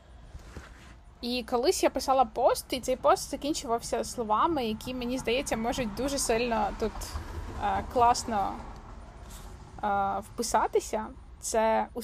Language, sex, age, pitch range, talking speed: Ukrainian, female, 20-39, 210-255 Hz, 115 wpm